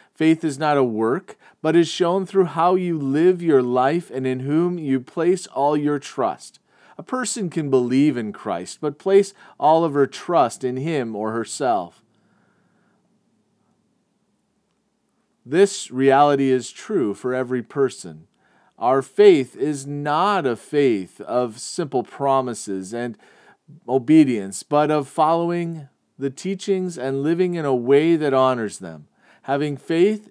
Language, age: English, 40-59